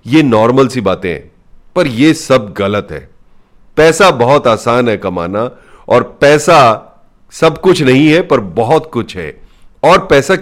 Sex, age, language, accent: male, 40-59, Hindi, native